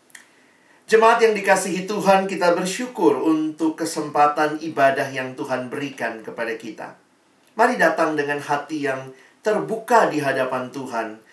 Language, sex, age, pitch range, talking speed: Indonesian, male, 40-59, 130-190 Hz, 120 wpm